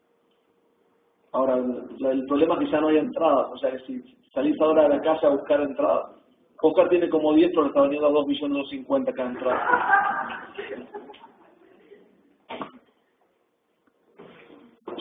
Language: Spanish